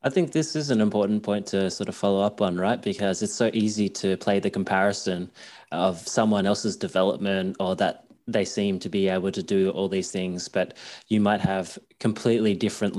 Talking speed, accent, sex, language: 205 wpm, Australian, male, English